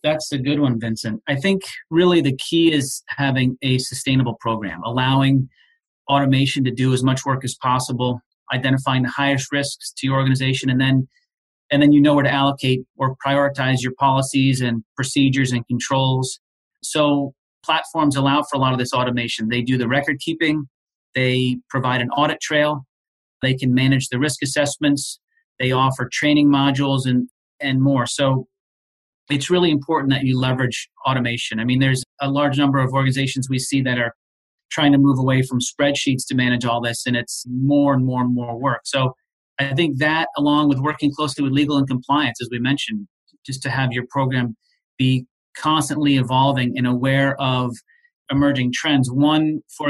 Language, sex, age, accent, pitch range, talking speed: English, male, 30-49, American, 130-145 Hz, 180 wpm